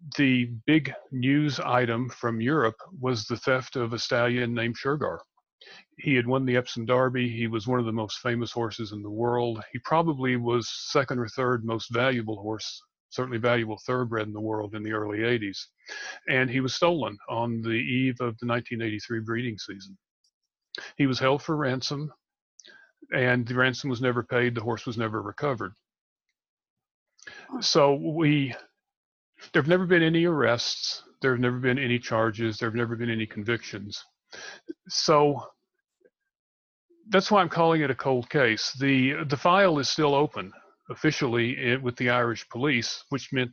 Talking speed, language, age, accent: 165 wpm, English, 40-59, American